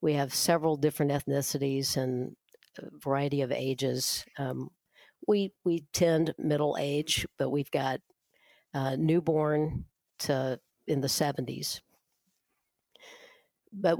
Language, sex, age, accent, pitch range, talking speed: English, female, 50-69, American, 140-160 Hz, 110 wpm